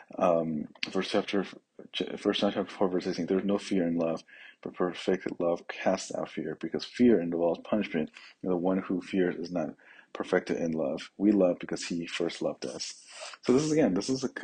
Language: English